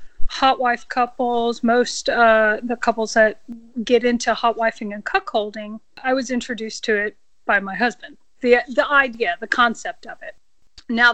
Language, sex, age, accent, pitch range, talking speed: English, female, 40-59, American, 215-245 Hz, 160 wpm